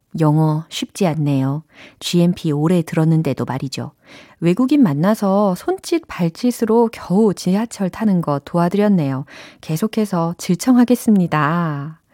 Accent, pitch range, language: native, 155-245 Hz, Korean